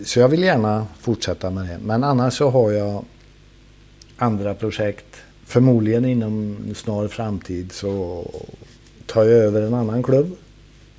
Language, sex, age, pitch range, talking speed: Swedish, male, 50-69, 95-115 Hz, 135 wpm